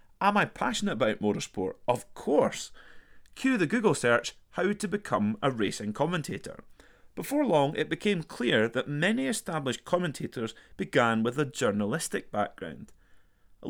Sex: male